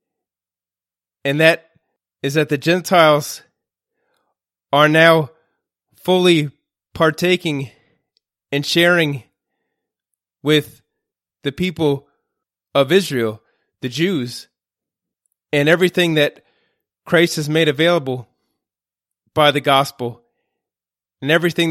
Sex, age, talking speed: male, 30-49, 85 wpm